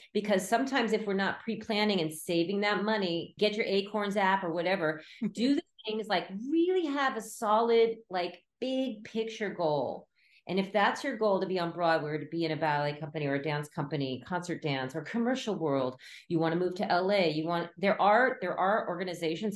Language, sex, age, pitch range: English, female, 40-59, 165-215 Hz